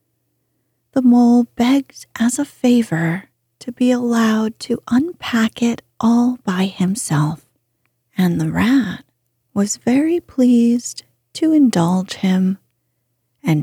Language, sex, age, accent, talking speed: English, female, 30-49, American, 110 wpm